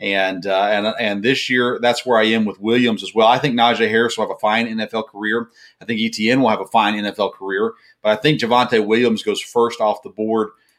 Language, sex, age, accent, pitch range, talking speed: English, male, 40-59, American, 110-140 Hz, 240 wpm